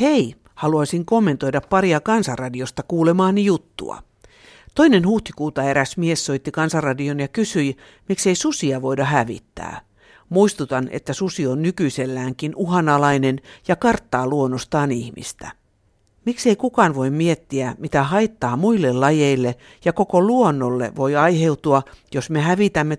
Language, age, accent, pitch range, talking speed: Finnish, 60-79, native, 135-185 Hz, 115 wpm